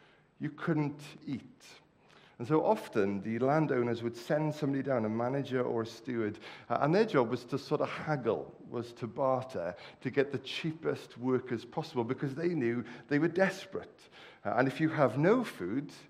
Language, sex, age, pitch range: English, male, 50-69, 115-150 Hz